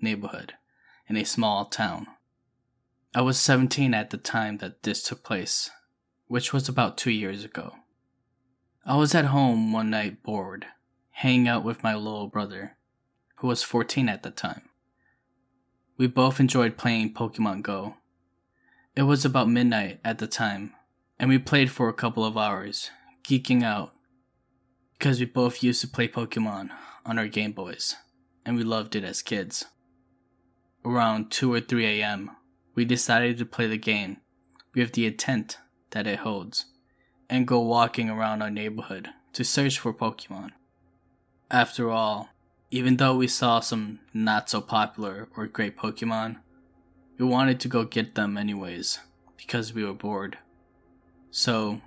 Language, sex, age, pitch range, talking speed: English, male, 10-29, 105-125 Hz, 155 wpm